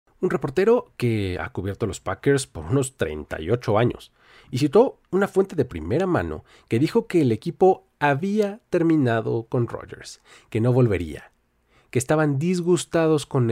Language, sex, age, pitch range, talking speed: Spanish, male, 40-59, 115-175 Hz, 155 wpm